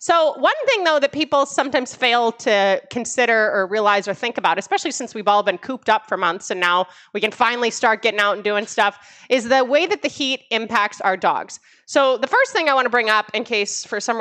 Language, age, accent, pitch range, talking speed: English, 30-49, American, 200-265 Hz, 240 wpm